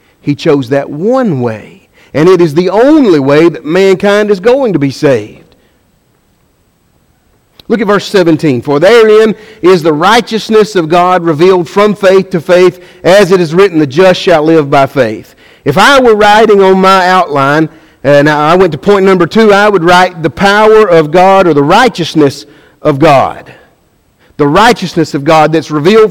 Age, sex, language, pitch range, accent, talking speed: 50-69, male, English, 170-235 Hz, American, 175 wpm